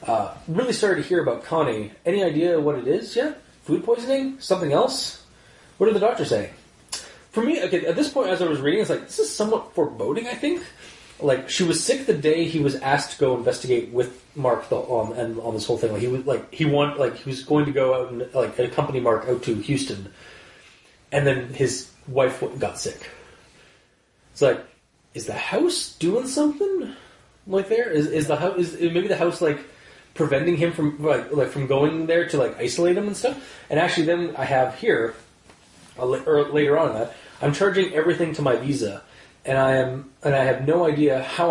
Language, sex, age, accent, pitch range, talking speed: English, male, 30-49, American, 130-180 Hz, 210 wpm